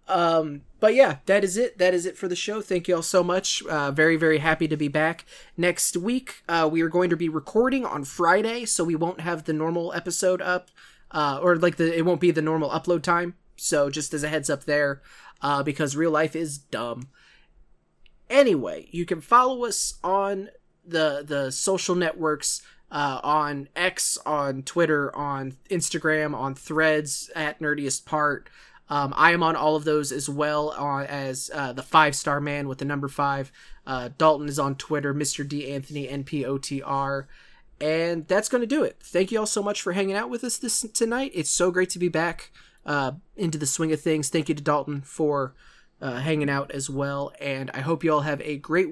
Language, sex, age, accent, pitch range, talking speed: English, male, 20-39, American, 145-175 Hz, 200 wpm